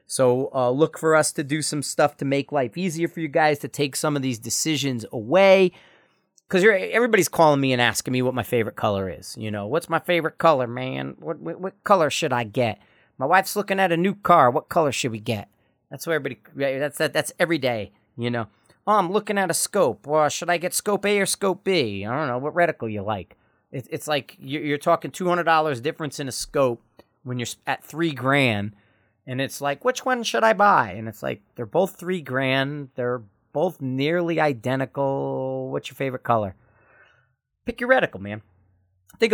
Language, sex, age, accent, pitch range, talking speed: English, male, 40-59, American, 125-185 Hz, 205 wpm